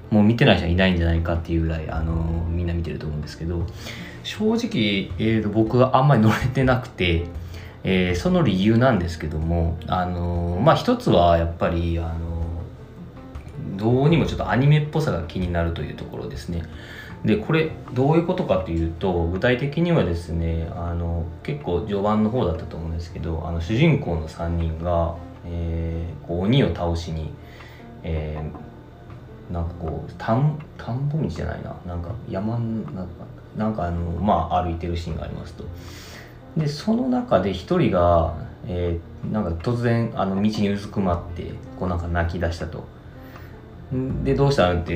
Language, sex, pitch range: Japanese, male, 85-115 Hz